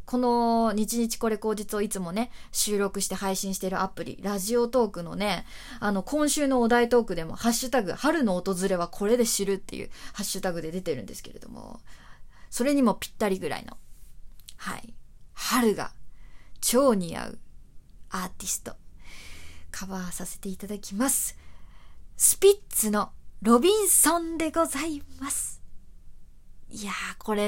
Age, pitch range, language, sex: 20-39, 195-275 Hz, Japanese, female